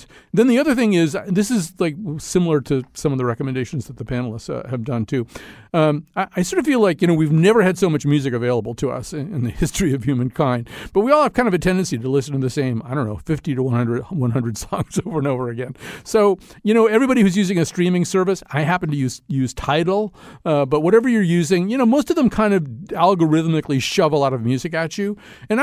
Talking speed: 250 wpm